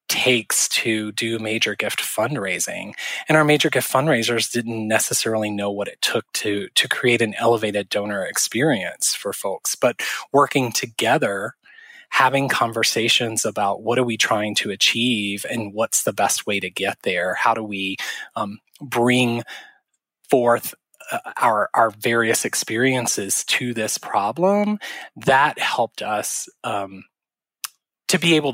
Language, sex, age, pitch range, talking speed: English, male, 20-39, 110-135 Hz, 140 wpm